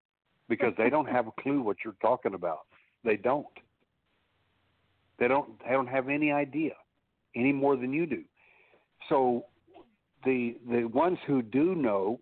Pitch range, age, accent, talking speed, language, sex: 110-135 Hz, 60-79, American, 150 wpm, English, male